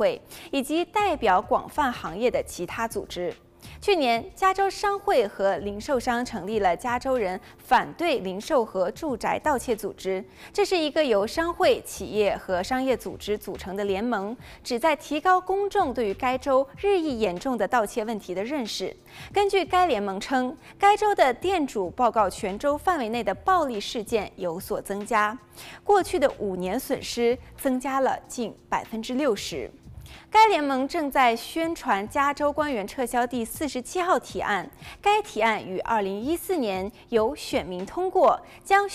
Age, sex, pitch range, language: 20-39, female, 210-330 Hz, Chinese